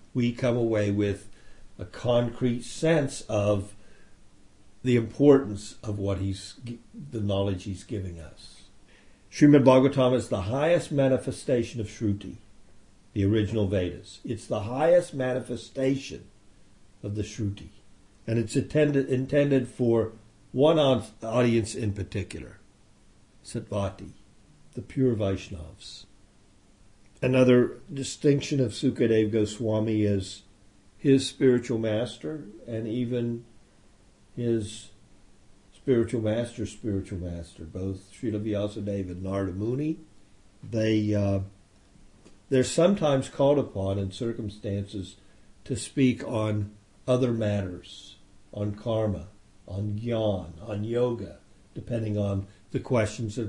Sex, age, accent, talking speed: male, 50-69, American, 105 wpm